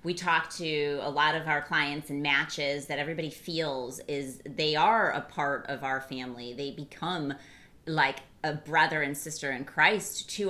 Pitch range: 140-175 Hz